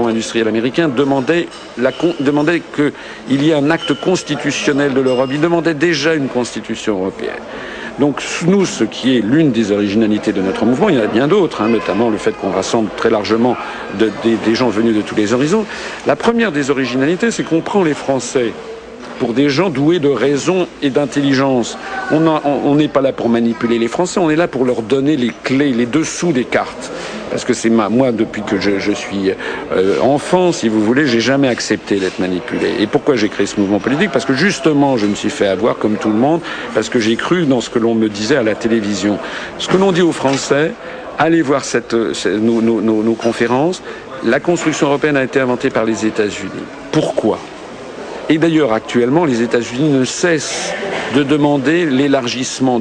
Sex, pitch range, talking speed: male, 110-145 Hz, 205 wpm